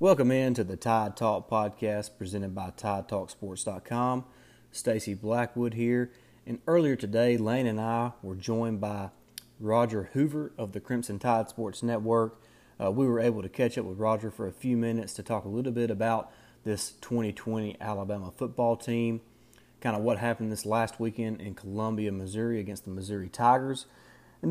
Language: English